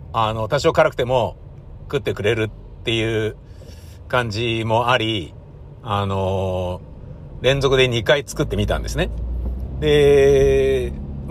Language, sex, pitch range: Japanese, male, 110-175 Hz